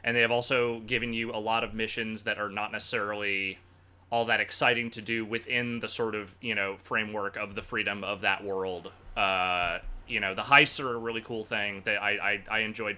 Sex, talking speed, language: male, 215 wpm, English